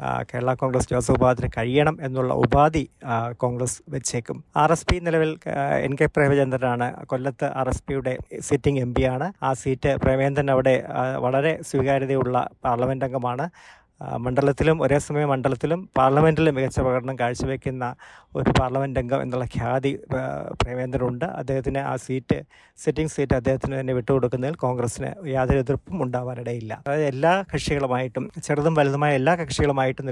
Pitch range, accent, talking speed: 130-155 Hz, native, 130 wpm